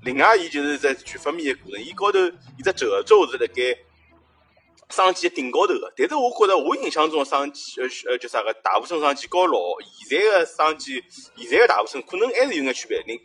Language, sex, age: Chinese, male, 30-49